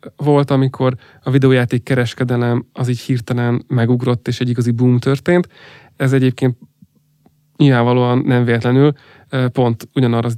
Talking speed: 120 wpm